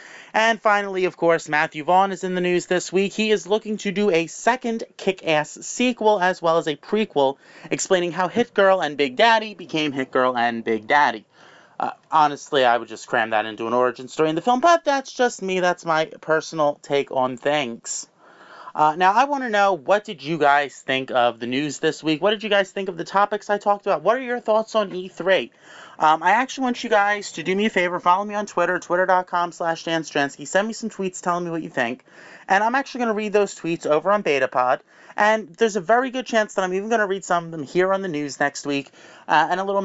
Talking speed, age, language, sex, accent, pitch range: 240 wpm, 30-49, English, male, American, 140-205 Hz